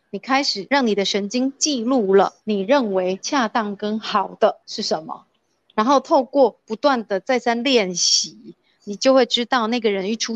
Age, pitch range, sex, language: 30-49, 200-260 Hz, female, Chinese